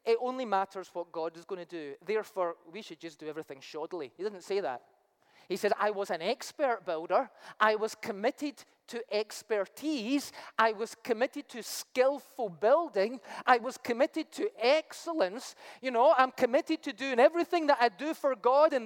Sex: male